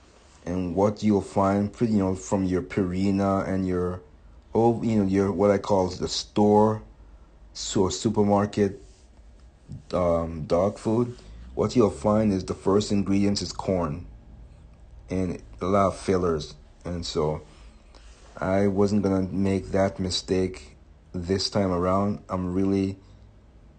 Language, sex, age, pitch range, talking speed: English, male, 50-69, 80-100 Hz, 135 wpm